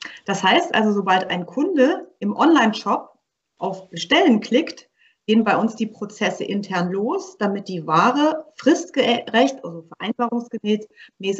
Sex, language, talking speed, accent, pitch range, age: female, German, 125 wpm, German, 185-245 Hz, 30-49